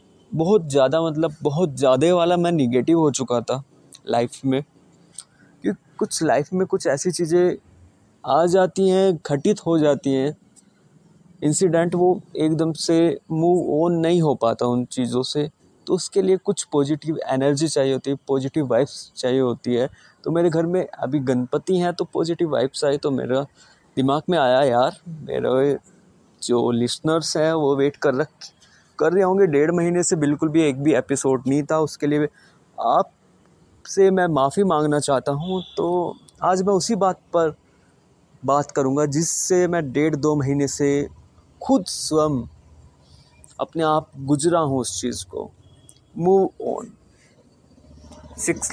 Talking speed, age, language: 155 wpm, 20-39, Hindi